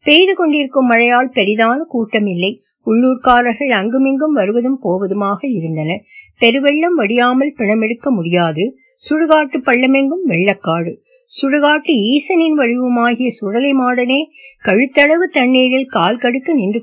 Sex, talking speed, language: female, 100 wpm, Tamil